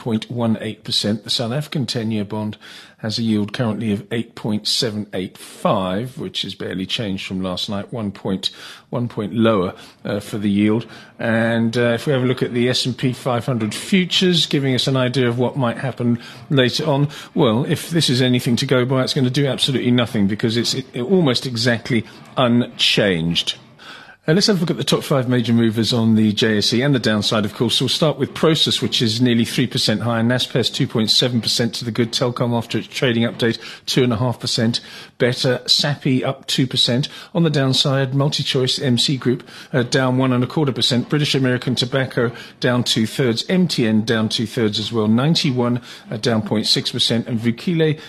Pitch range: 115-135 Hz